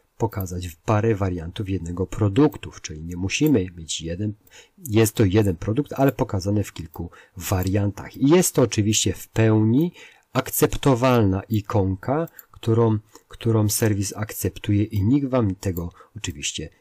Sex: male